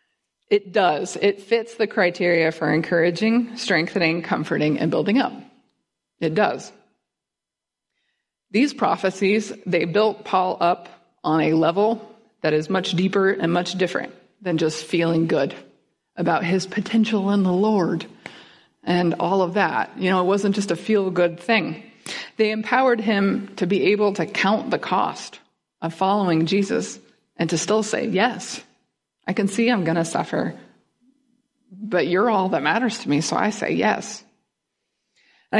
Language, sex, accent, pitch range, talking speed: English, female, American, 170-215 Hz, 150 wpm